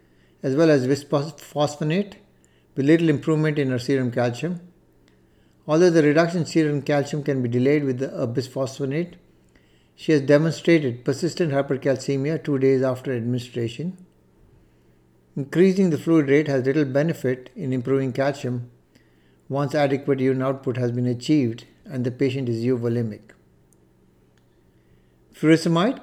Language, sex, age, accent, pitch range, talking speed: English, male, 60-79, Indian, 125-155 Hz, 125 wpm